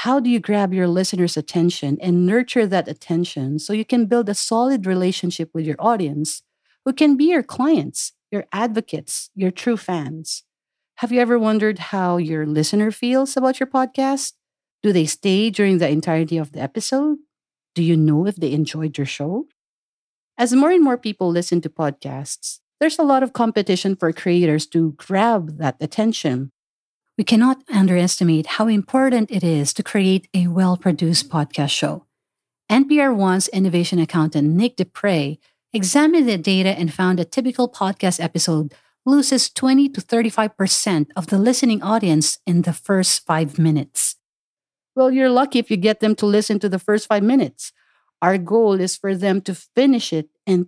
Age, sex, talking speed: 50-69, female, 170 wpm